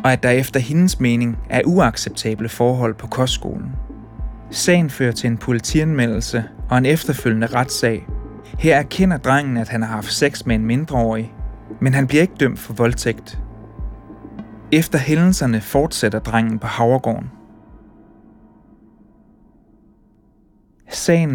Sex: male